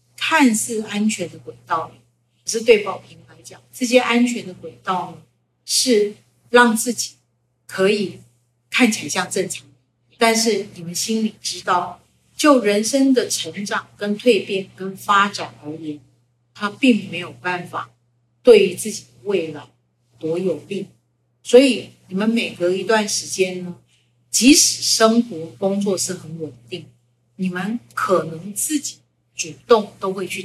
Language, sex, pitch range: Chinese, female, 130-210 Hz